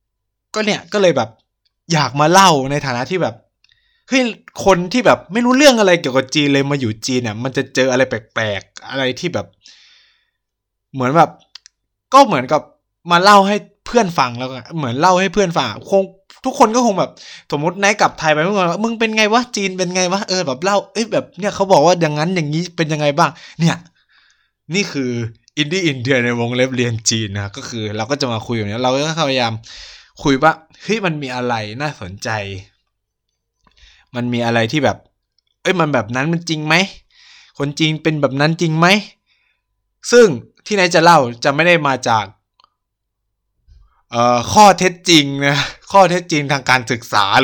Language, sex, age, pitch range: Thai, male, 20-39, 120-180 Hz